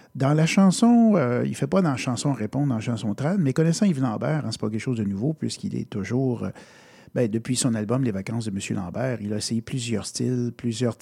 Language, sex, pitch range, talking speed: French, male, 115-150 Hz, 245 wpm